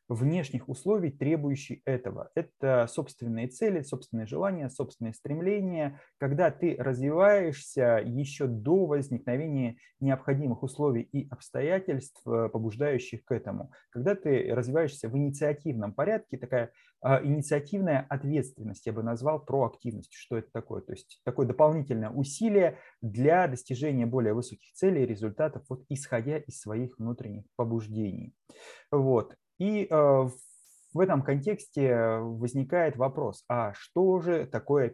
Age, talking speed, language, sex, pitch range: 20-39, 120 wpm, Russian, male, 120-150 Hz